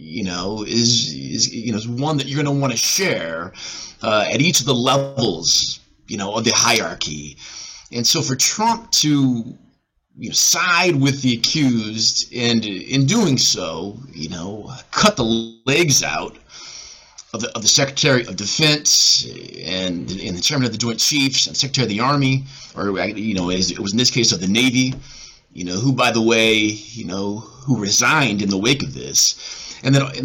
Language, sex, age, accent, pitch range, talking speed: English, male, 30-49, American, 115-140 Hz, 190 wpm